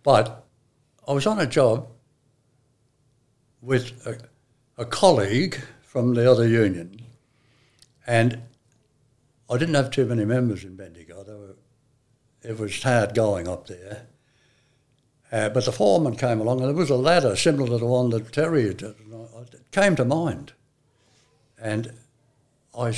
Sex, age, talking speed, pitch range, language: male, 60-79, 145 wpm, 115-135 Hz, English